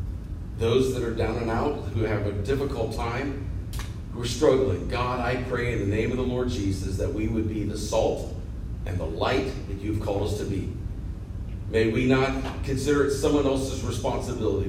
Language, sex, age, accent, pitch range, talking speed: English, male, 40-59, American, 95-120 Hz, 190 wpm